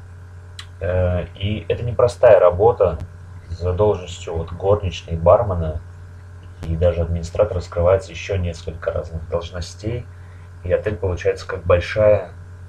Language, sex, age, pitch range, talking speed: Russian, male, 30-49, 90-95 Hz, 105 wpm